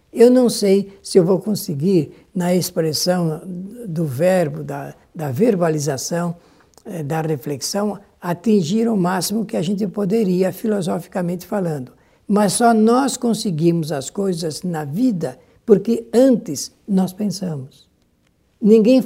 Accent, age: Brazilian, 60-79